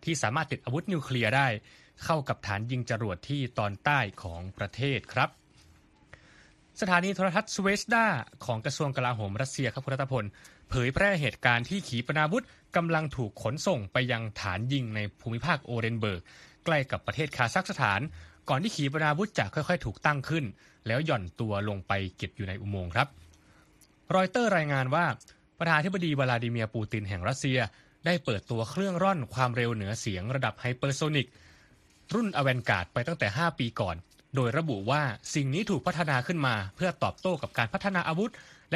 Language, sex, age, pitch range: Thai, male, 20-39, 115-165 Hz